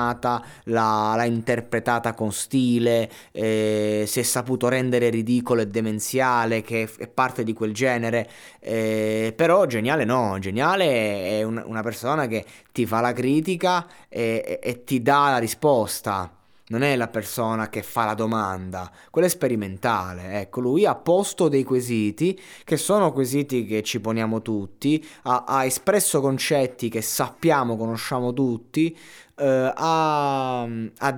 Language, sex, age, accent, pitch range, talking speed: Italian, male, 20-39, native, 110-140 Hz, 140 wpm